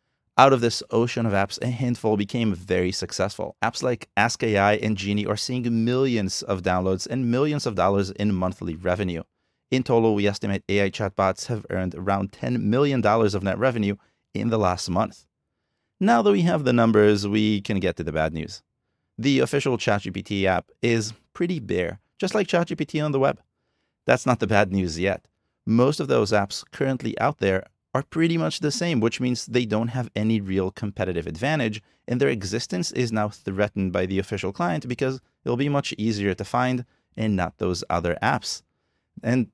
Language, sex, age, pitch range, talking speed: English, male, 30-49, 100-125 Hz, 185 wpm